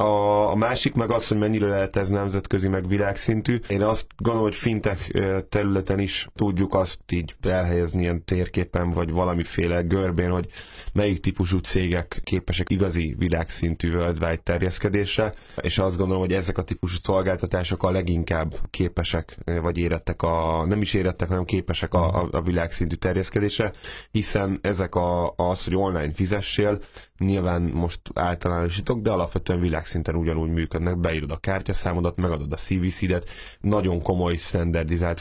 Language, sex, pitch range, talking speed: Hungarian, male, 85-95 Hz, 145 wpm